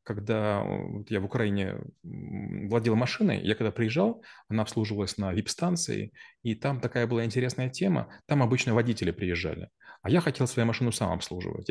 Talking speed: 160 wpm